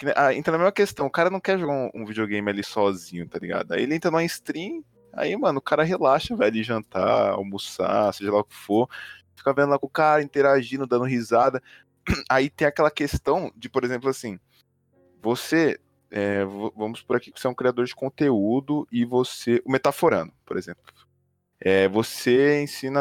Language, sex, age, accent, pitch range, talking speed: Portuguese, male, 20-39, Brazilian, 110-150 Hz, 190 wpm